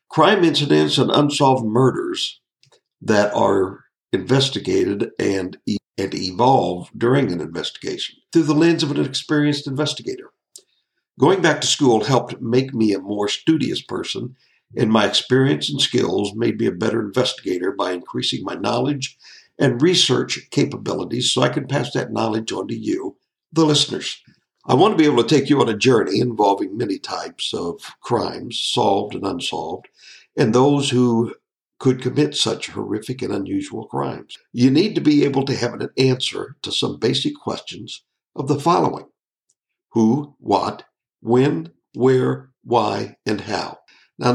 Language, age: English, 60-79